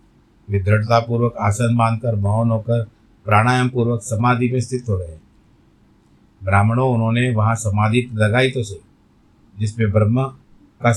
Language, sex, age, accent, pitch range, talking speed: Hindi, male, 50-69, native, 105-125 Hz, 125 wpm